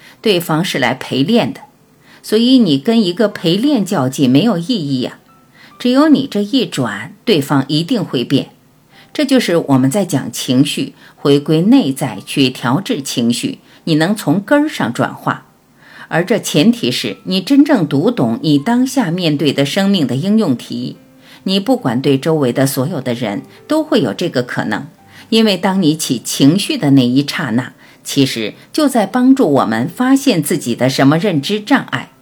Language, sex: Chinese, female